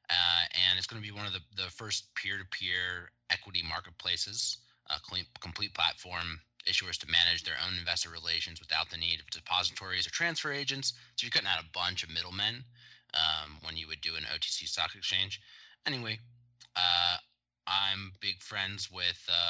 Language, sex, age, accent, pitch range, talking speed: English, male, 20-39, American, 85-100 Hz, 175 wpm